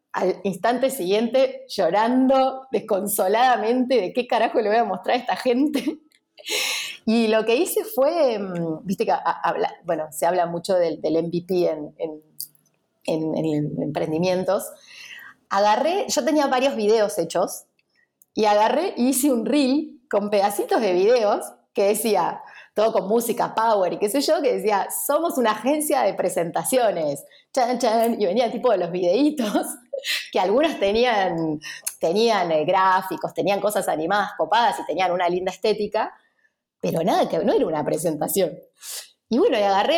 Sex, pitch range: female, 190-275 Hz